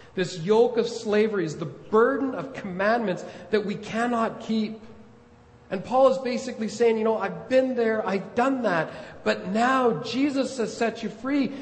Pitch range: 180-235 Hz